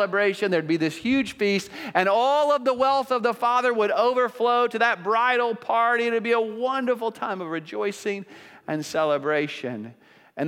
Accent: American